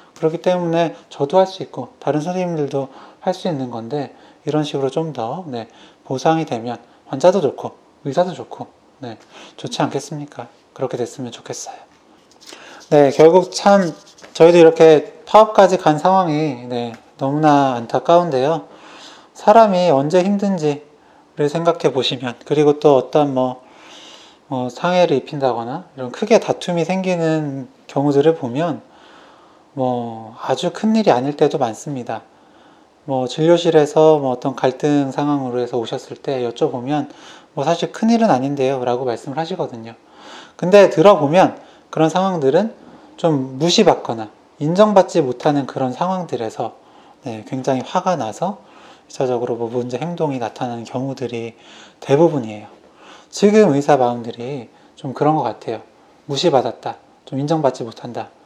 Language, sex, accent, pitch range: Korean, male, native, 130-170 Hz